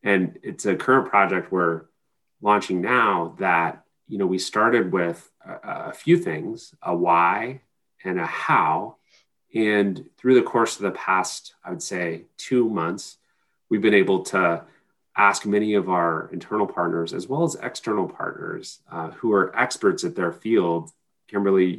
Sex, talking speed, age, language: male, 160 wpm, 30-49, English